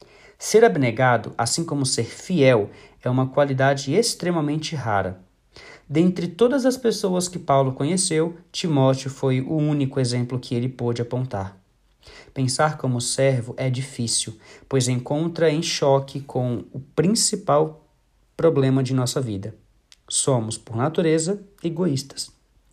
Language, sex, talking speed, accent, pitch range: Portuguese, male, 125 wpm, Brazilian, 125-160 Hz